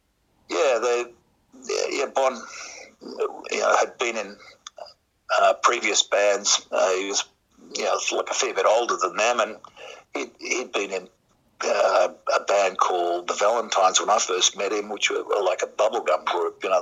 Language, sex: English, male